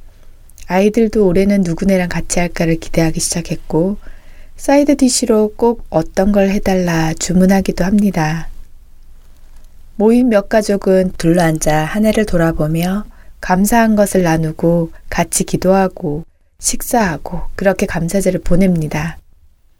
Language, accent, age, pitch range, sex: Korean, native, 20-39, 170-215 Hz, female